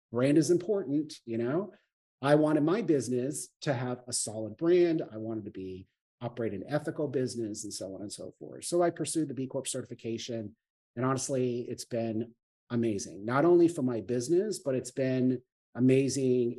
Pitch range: 115-140 Hz